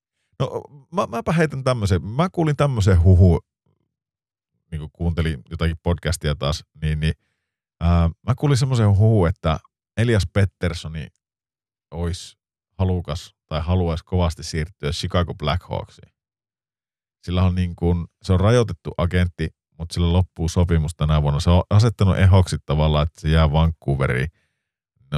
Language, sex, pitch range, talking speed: Finnish, male, 75-95 Hz, 135 wpm